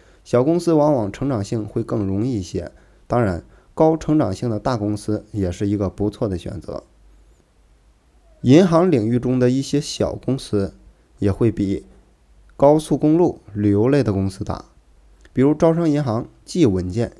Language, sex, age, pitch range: Chinese, male, 20-39, 100-135 Hz